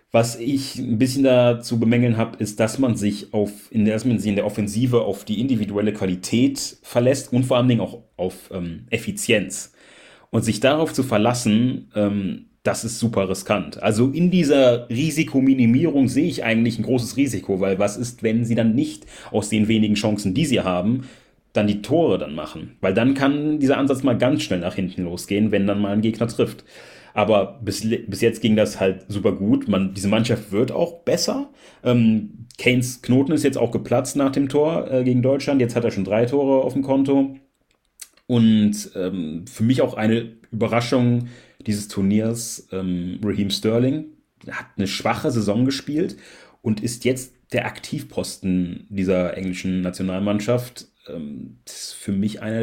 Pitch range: 105-130 Hz